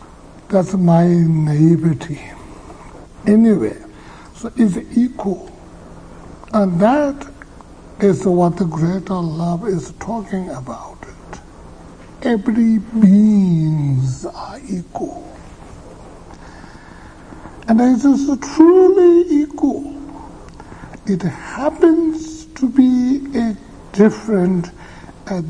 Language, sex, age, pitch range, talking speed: English, male, 60-79, 160-230 Hz, 75 wpm